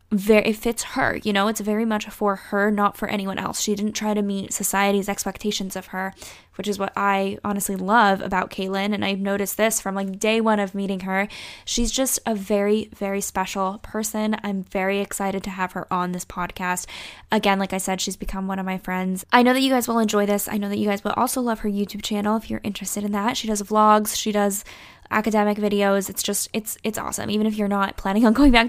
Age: 10-29